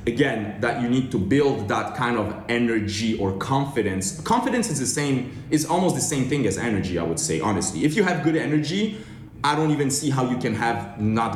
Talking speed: 215 wpm